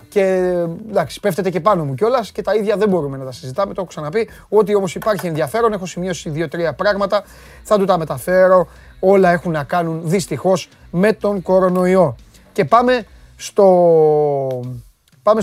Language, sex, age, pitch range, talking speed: Greek, male, 30-49, 155-210 Hz, 165 wpm